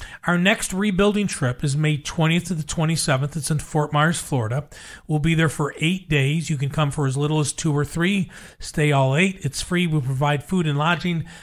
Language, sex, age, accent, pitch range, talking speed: English, male, 40-59, American, 155-185 Hz, 215 wpm